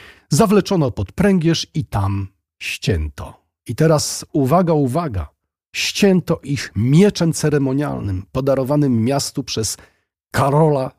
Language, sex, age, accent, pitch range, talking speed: Polish, male, 40-59, native, 95-135 Hz, 100 wpm